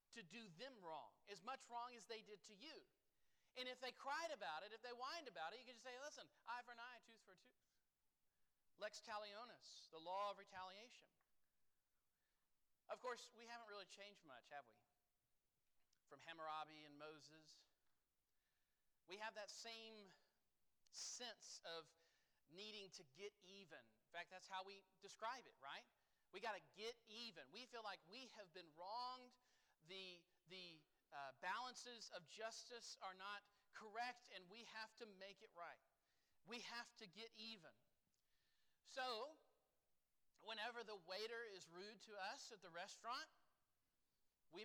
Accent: American